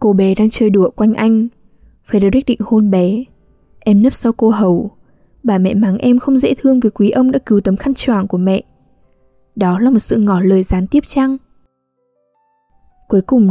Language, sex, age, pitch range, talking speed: English, female, 10-29, 190-240 Hz, 190 wpm